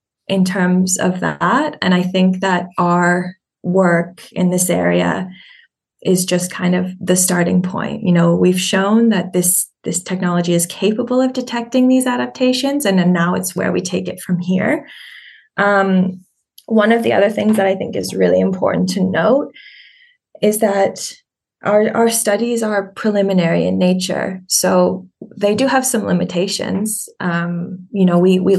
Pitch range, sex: 180-210 Hz, female